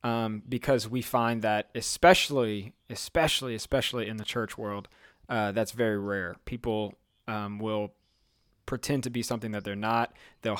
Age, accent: 20-39, American